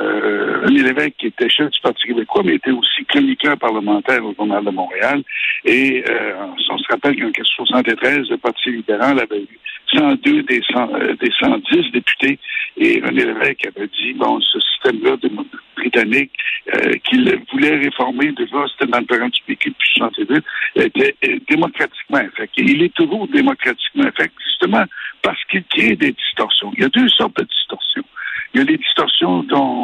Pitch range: 270-380 Hz